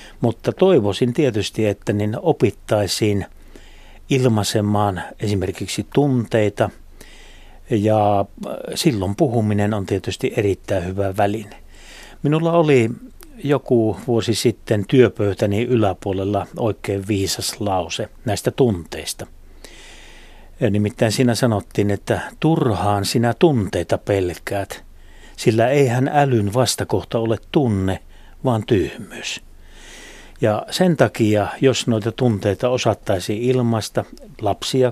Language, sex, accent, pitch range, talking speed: Finnish, male, native, 100-125 Hz, 95 wpm